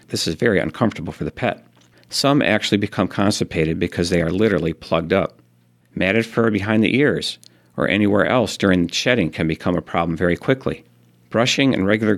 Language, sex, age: English, male, 50-69